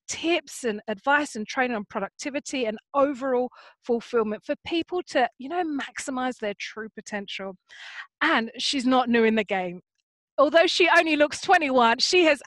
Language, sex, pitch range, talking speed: English, female, 215-290 Hz, 160 wpm